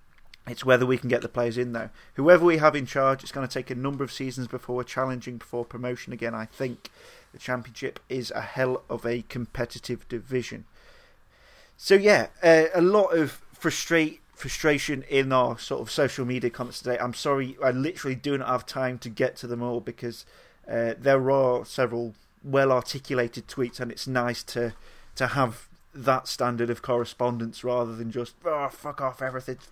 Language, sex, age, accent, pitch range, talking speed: English, male, 30-49, British, 120-135 Hz, 185 wpm